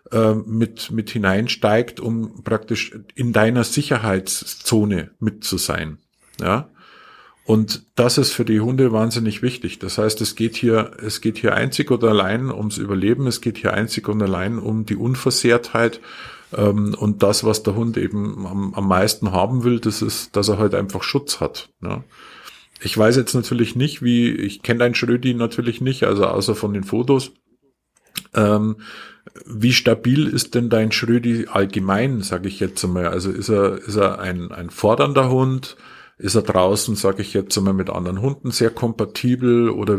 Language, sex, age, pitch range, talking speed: German, male, 50-69, 100-120 Hz, 170 wpm